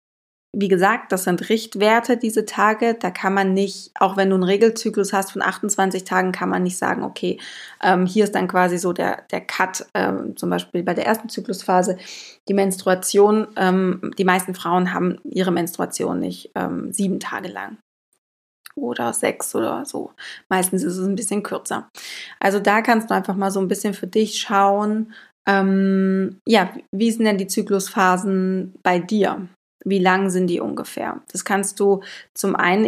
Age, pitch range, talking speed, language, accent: 20-39, 185-215 Hz, 175 wpm, German, German